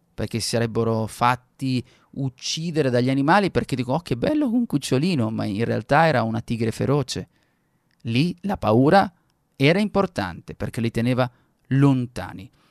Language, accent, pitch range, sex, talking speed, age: Italian, native, 120-155 Hz, male, 140 wpm, 30-49